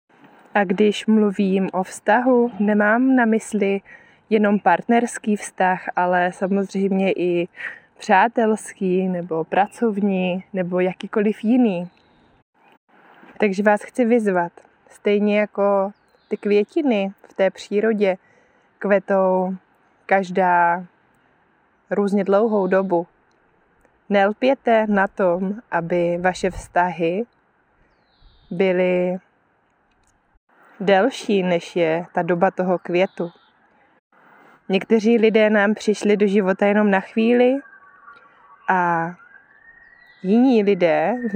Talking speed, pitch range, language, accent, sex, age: 90 wpm, 180-220 Hz, Czech, native, female, 20-39